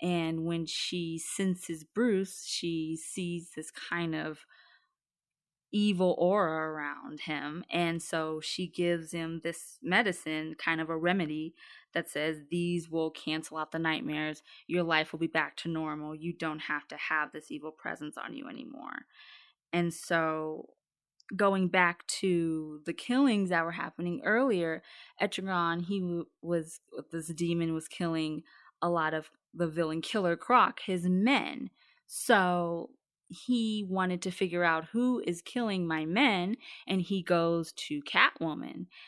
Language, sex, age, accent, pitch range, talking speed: English, female, 20-39, American, 160-195 Hz, 145 wpm